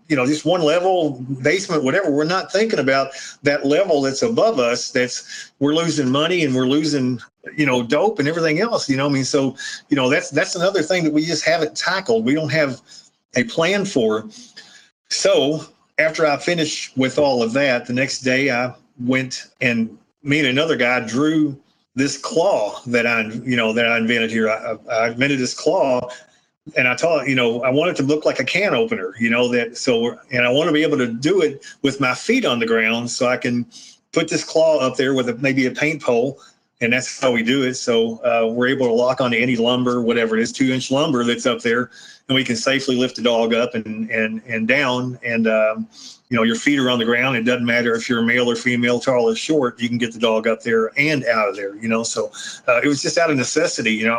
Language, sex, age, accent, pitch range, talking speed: English, male, 40-59, American, 120-150 Hz, 235 wpm